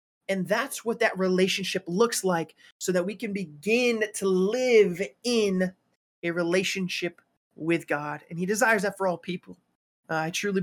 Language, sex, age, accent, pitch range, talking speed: English, male, 20-39, American, 170-215 Hz, 165 wpm